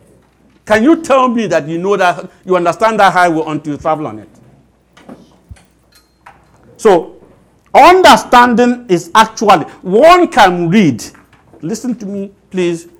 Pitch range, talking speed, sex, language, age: 150-220 Hz, 130 wpm, male, English, 60-79